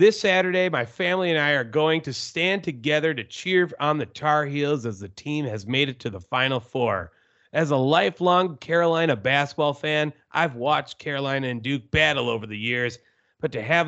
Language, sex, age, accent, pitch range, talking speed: English, male, 30-49, American, 135-175 Hz, 195 wpm